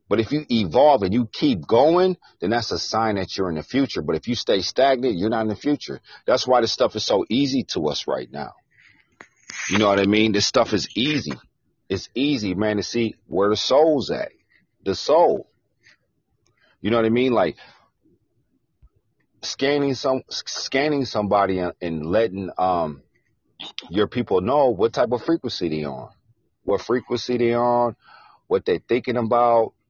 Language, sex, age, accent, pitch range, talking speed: English, male, 40-59, American, 95-125 Hz, 175 wpm